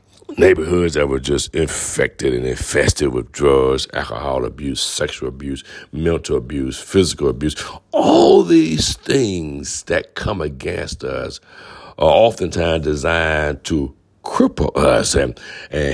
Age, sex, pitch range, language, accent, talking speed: 60-79, male, 75-105 Hz, English, American, 120 wpm